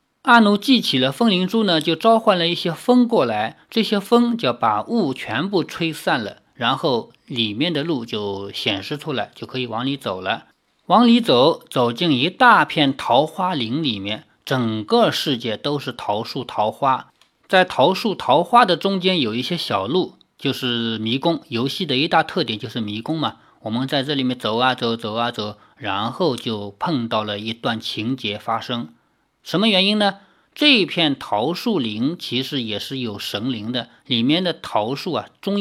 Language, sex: Chinese, male